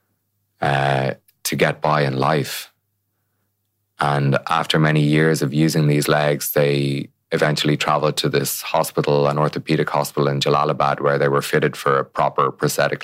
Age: 20-39